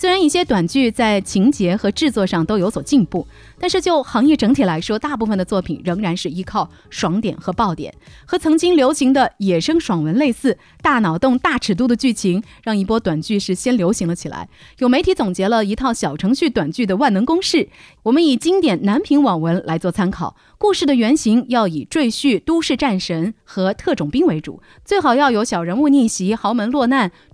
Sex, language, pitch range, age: female, Chinese, 180-270 Hz, 30-49